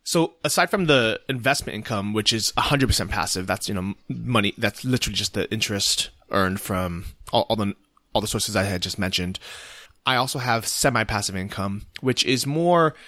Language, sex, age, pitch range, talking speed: English, male, 20-39, 95-125 Hz, 185 wpm